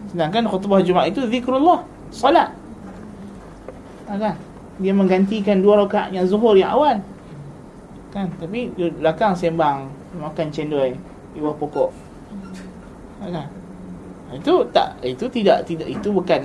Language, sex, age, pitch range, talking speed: Malay, male, 20-39, 165-215 Hz, 140 wpm